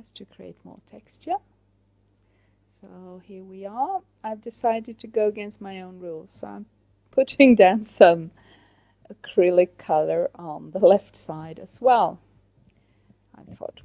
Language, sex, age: Chinese, female, 40-59